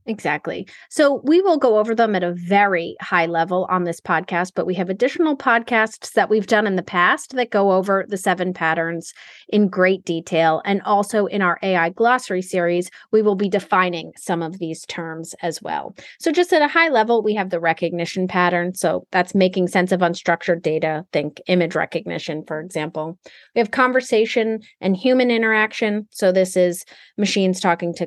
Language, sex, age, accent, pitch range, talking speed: English, female, 30-49, American, 175-240 Hz, 185 wpm